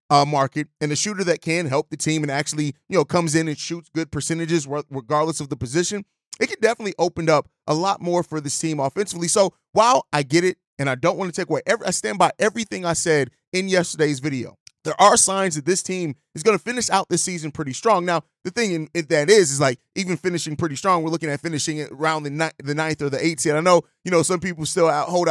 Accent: American